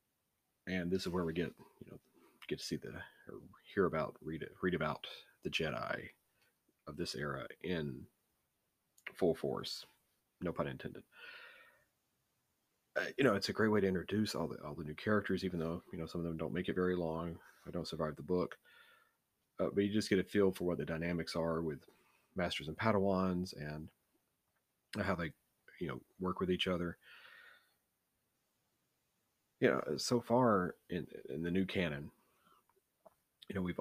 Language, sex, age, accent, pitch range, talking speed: English, male, 40-59, American, 80-95 Hz, 175 wpm